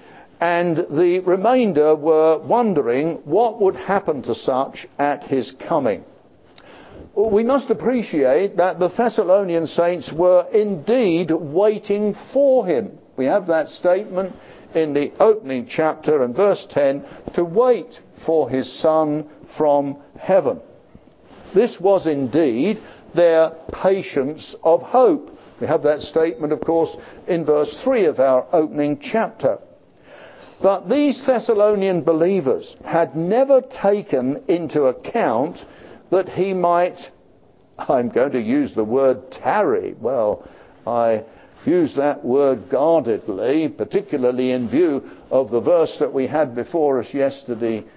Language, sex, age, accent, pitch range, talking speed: English, male, 60-79, British, 145-200 Hz, 125 wpm